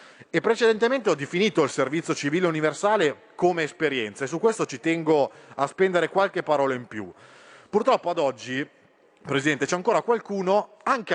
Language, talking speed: Italian, 155 wpm